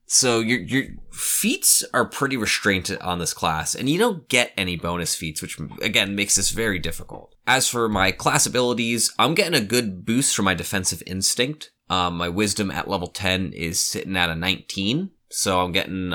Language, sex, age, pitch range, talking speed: English, male, 20-39, 90-110 Hz, 190 wpm